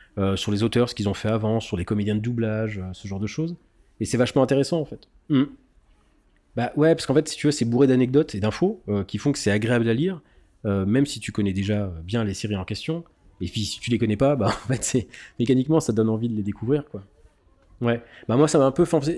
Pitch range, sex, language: 100-130 Hz, male, French